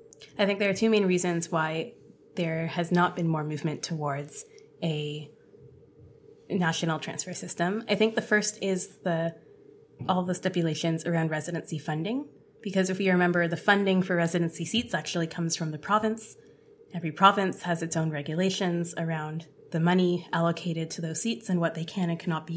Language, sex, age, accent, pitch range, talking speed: English, female, 20-39, American, 165-200 Hz, 175 wpm